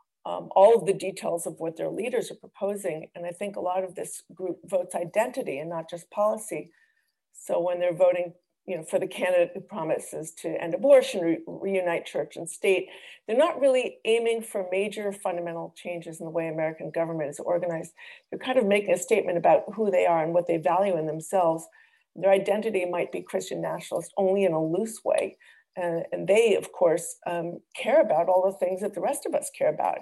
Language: English